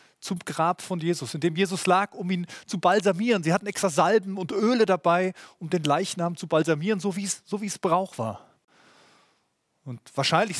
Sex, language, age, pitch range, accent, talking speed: male, German, 30-49, 160-200 Hz, German, 175 wpm